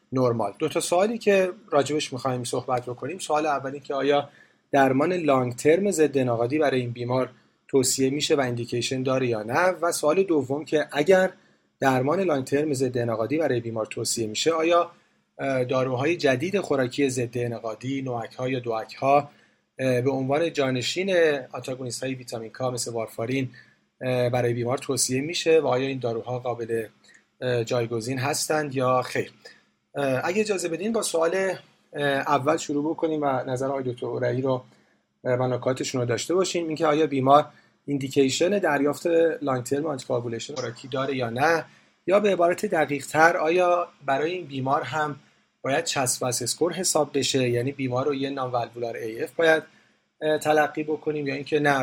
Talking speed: 140 wpm